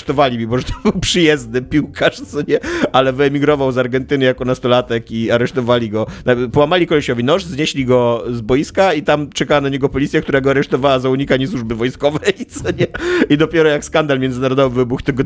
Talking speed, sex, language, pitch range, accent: 185 wpm, male, Polish, 110-135 Hz, native